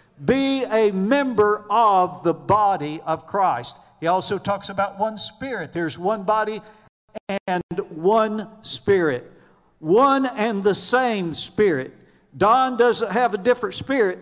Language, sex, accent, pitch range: English, male, American, 180-240 Hz